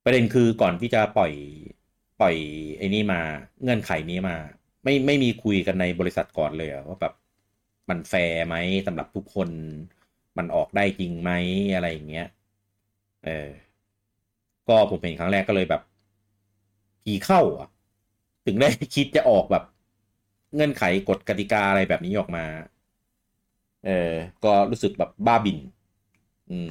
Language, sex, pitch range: Thai, male, 90-110 Hz